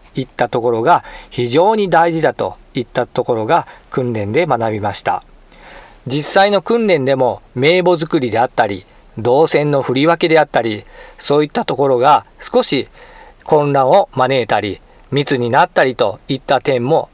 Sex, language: male, Japanese